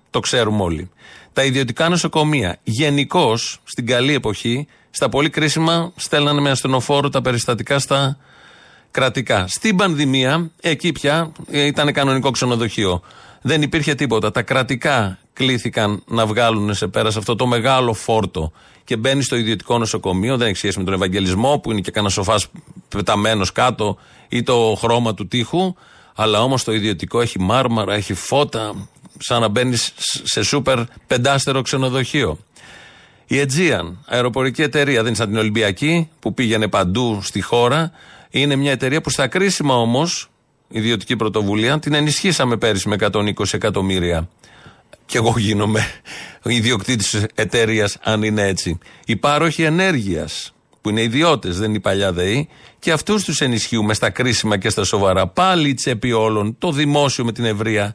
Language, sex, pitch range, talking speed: Greek, male, 105-140 Hz, 150 wpm